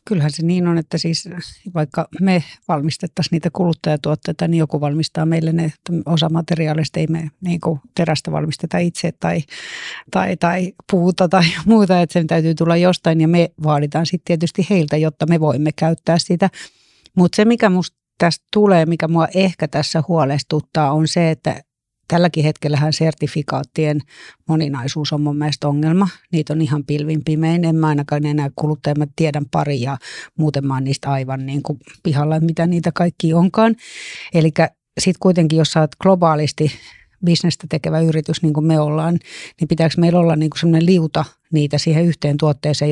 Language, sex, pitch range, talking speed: Finnish, female, 155-175 Hz, 165 wpm